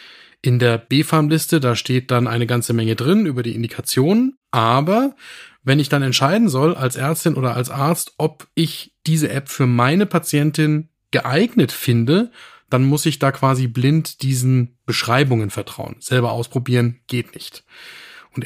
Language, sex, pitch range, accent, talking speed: German, male, 120-150 Hz, German, 155 wpm